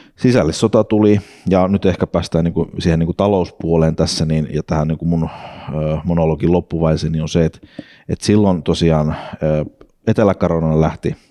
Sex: male